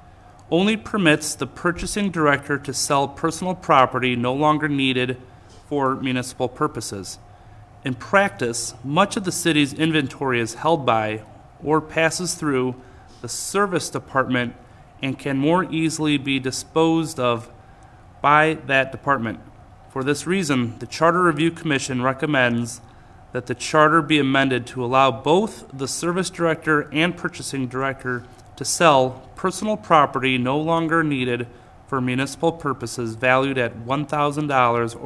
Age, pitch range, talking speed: 30-49, 120-150 Hz, 130 wpm